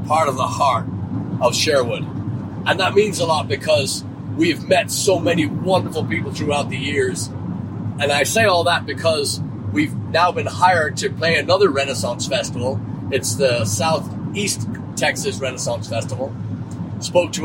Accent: American